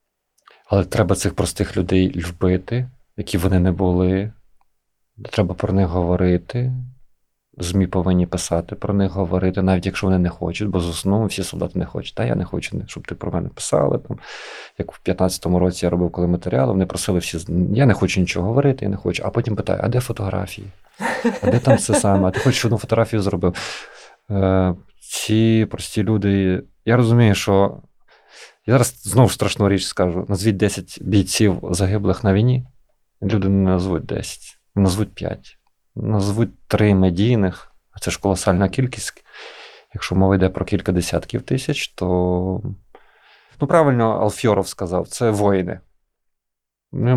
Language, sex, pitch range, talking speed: Ukrainian, male, 90-110 Hz, 160 wpm